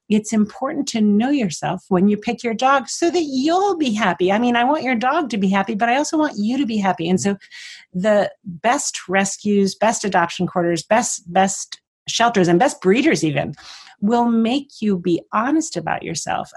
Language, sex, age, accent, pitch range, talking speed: English, female, 40-59, American, 180-230 Hz, 195 wpm